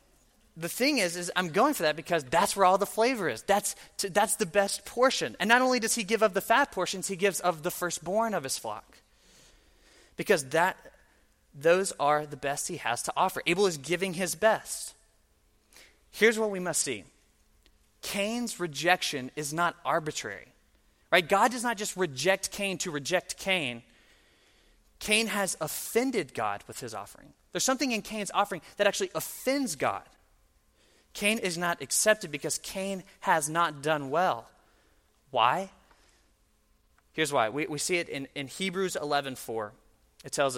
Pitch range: 135-195 Hz